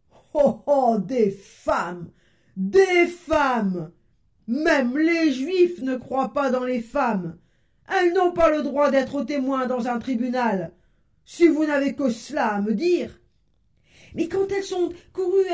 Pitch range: 235-340 Hz